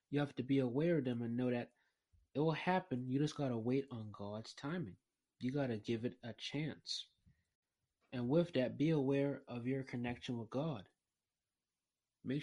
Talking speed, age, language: 190 wpm, 30-49, English